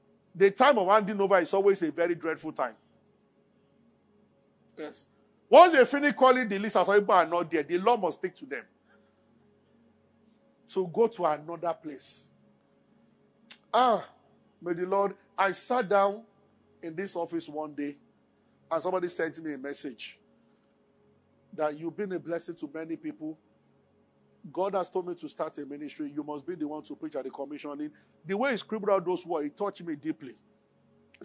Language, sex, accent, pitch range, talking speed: English, male, Nigerian, 155-205 Hz, 175 wpm